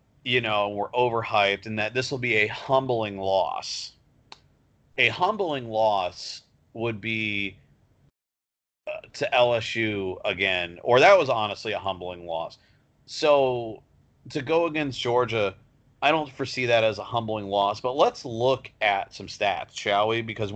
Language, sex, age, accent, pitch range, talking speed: English, male, 40-59, American, 105-130 Hz, 145 wpm